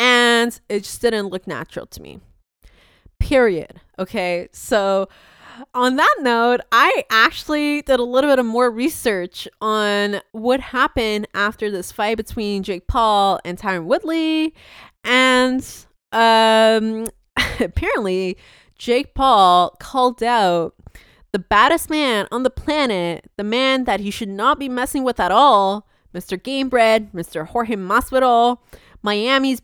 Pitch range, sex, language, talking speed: 195-255 Hz, female, English, 135 wpm